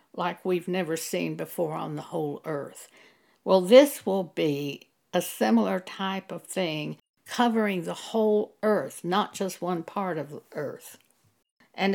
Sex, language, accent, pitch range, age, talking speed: female, English, American, 175-225 Hz, 60-79, 150 wpm